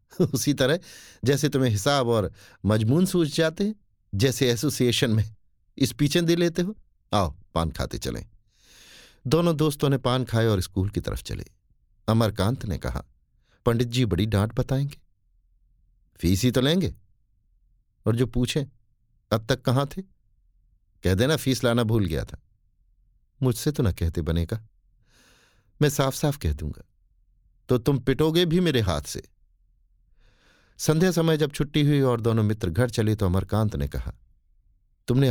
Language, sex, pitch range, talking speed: Hindi, male, 95-130 Hz, 155 wpm